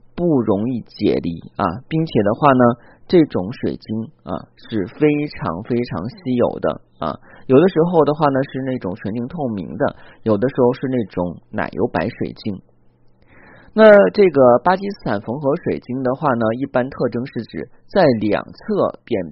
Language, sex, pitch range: Chinese, male, 115-155 Hz